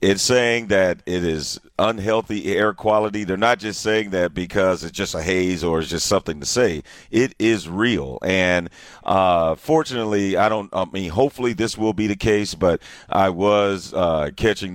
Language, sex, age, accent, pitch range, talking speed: English, male, 40-59, American, 85-105 Hz, 185 wpm